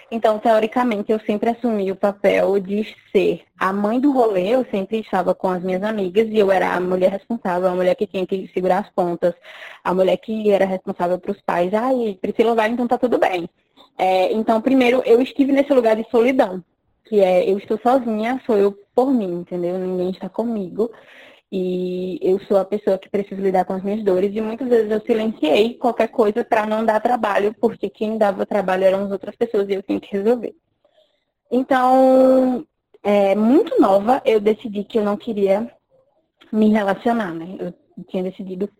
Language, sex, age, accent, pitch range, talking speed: Portuguese, female, 20-39, Brazilian, 190-235 Hz, 190 wpm